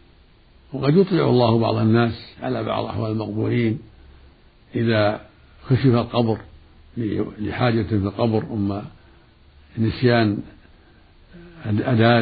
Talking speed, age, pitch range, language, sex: 90 wpm, 60-79, 105-125 Hz, Arabic, male